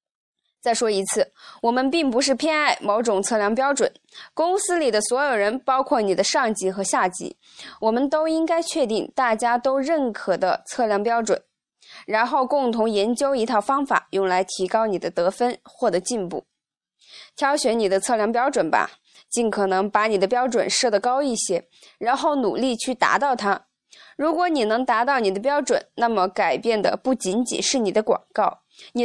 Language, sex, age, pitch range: Chinese, female, 20-39, 195-255 Hz